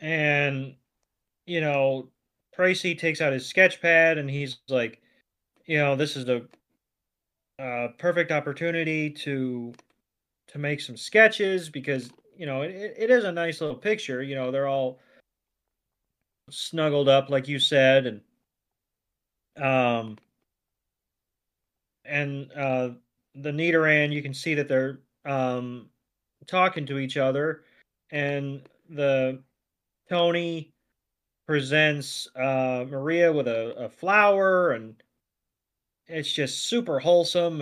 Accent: American